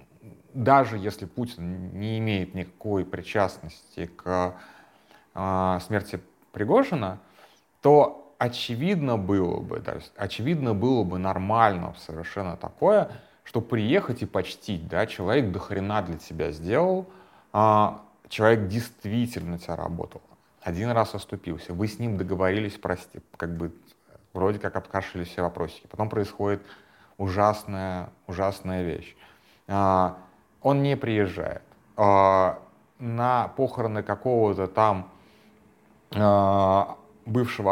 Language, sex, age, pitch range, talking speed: Russian, male, 30-49, 90-115 Hz, 105 wpm